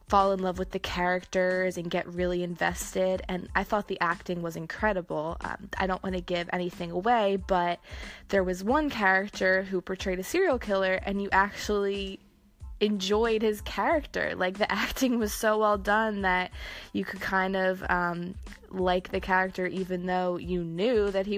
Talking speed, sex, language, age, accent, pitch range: 175 wpm, female, English, 20-39, American, 180-210 Hz